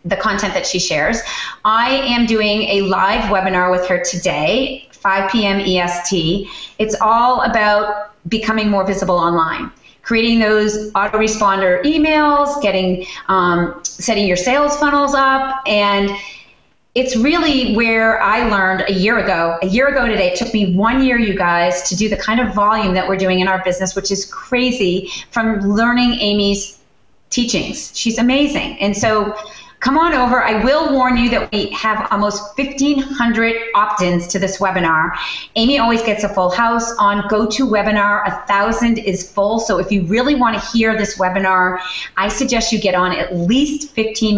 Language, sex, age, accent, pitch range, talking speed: English, female, 30-49, American, 190-235 Hz, 165 wpm